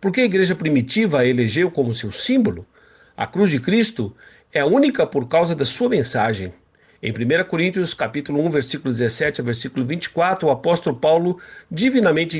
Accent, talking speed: Brazilian, 165 wpm